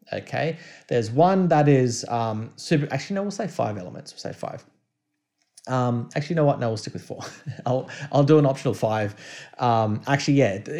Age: 30-49